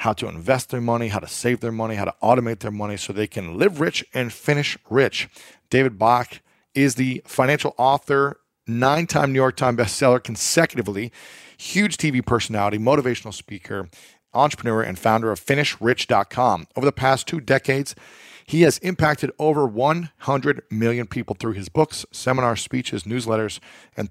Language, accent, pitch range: English, American, 110-145 Hz